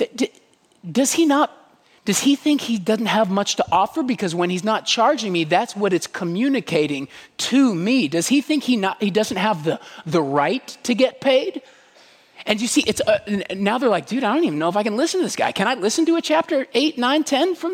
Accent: American